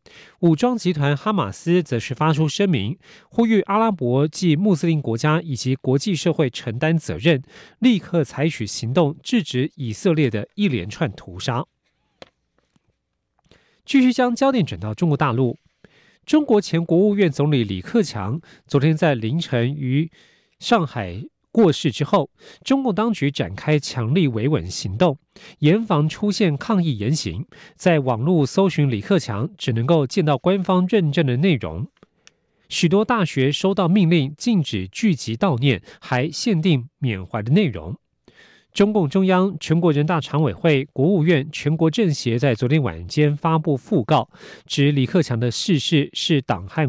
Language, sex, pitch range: Russian, male, 135-185 Hz